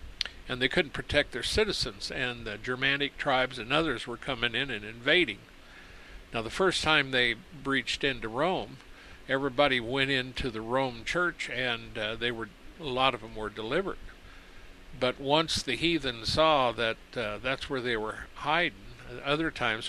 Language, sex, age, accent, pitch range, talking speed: English, male, 50-69, American, 115-145 Hz, 165 wpm